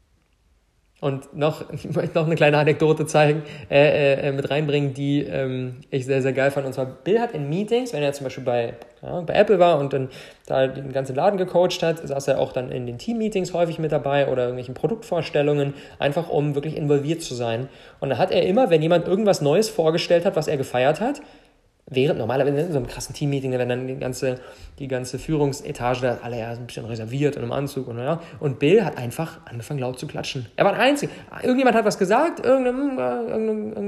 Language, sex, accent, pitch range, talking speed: German, male, German, 130-170 Hz, 215 wpm